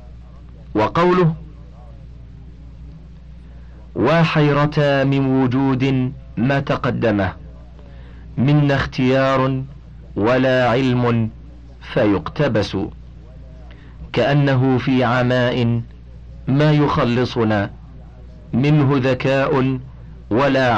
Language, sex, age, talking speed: Arabic, male, 40-59, 55 wpm